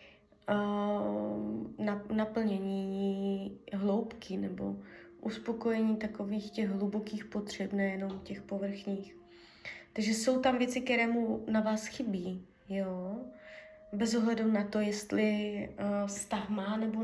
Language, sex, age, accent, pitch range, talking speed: Czech, female, 20-39, native, 195-220 Hz, 105 wpm